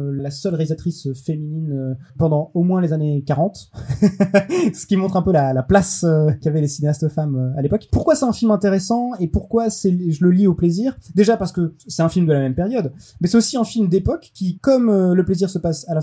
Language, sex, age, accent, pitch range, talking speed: French, male, 20-39, French, 150-190 Hz, 230 wpm